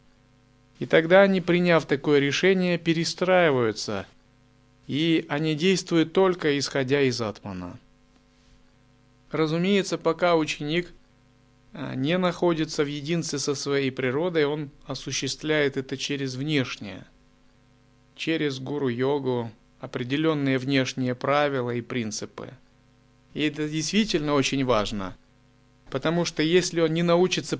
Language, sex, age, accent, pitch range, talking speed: Russian, male, 30-49, native, 130-160 Hz, 100 wpm